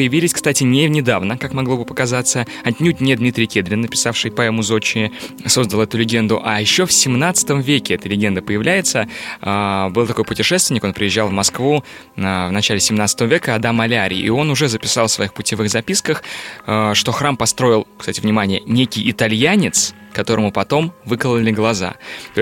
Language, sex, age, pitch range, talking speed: Russian, male, 20-39, 110-140 Hz, 160 wpm